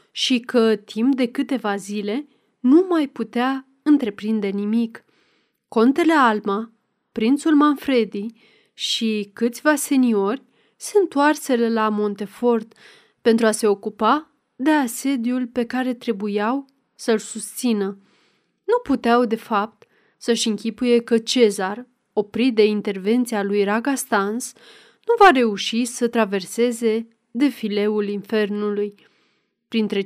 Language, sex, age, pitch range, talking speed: Romanian, female, 30-49, 210-265 Hz, 105 wpm